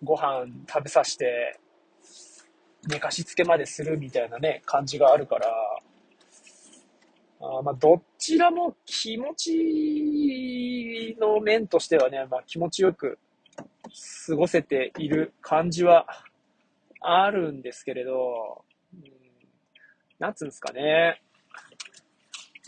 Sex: male